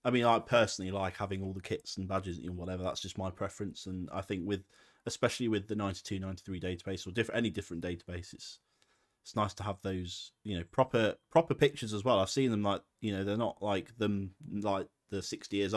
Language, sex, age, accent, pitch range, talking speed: English, male, 30-49, British, 95-120 Hz, 225 wpm